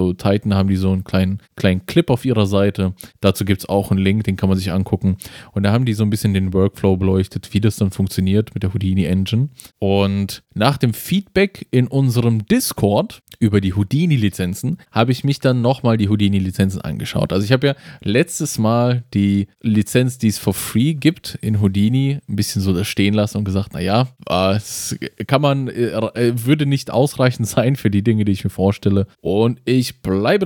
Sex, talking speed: male, 200 wpm